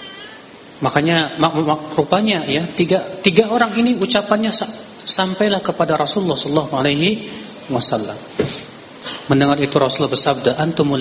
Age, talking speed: 40-59, 100 wpm